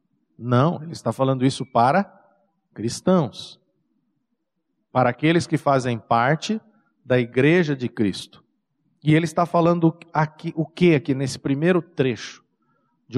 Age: 50-69